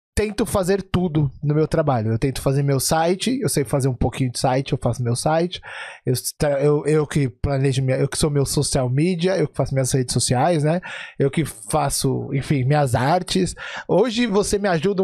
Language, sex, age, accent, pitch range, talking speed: Portuguese, male, 20-39, Brazilian, 135-190 Hz, 205 wpm